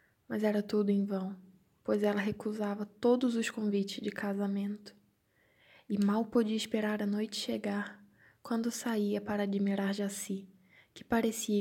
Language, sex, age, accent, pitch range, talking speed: Portuguese, female, 10-29, Brazilian, 200-220 Hz, 140 wpm